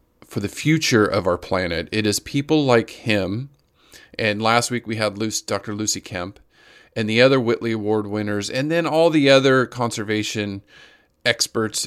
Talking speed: 165 wpm